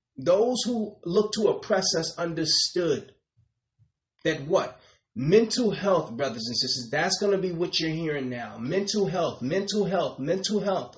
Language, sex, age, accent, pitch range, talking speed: English, male, 30-49, American, 130-185 Hz, 155 wpm